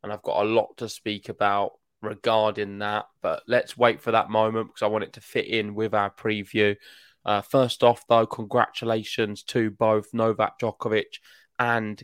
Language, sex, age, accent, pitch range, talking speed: English, male, 20-39, British, 105-120 Hz, 180 wpm